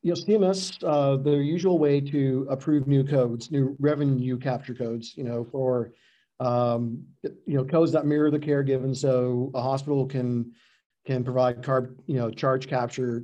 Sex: male